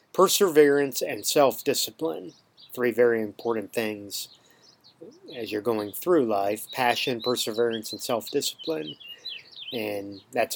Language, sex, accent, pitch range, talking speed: English, male, American, 115-145 Hz, 90 wpm